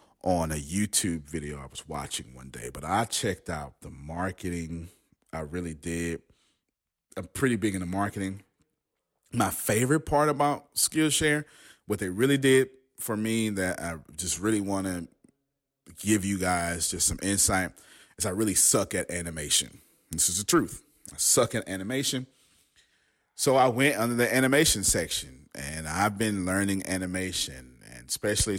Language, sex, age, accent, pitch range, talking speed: English, male, 30-49, American, 80-105 Hz, 155 wpm